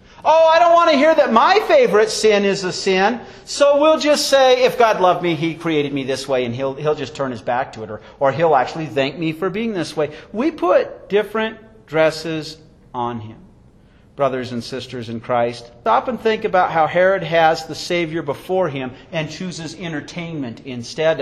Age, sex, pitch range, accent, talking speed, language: 40-59, male, 150-245 Hz, American, 200 wpm, English